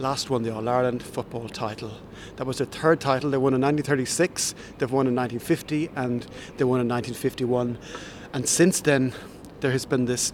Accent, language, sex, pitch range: Irish, English, male, 125-145 Hz